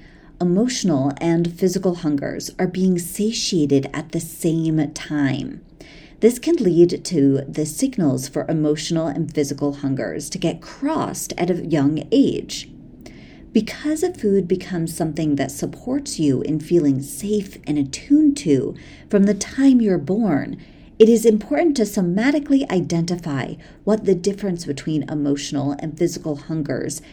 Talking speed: 135 wpm